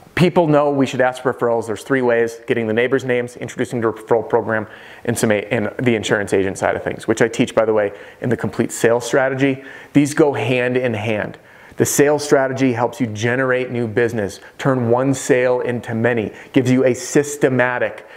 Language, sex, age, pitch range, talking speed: English, male, 30-49, 110-135 Hz, 200 wpm